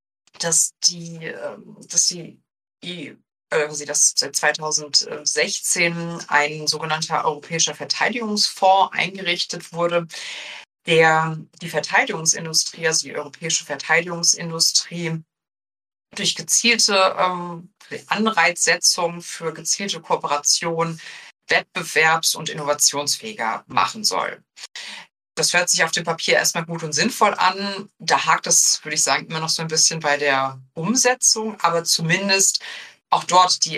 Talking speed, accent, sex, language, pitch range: 110 wpm, German, female, German, 155-180 Hz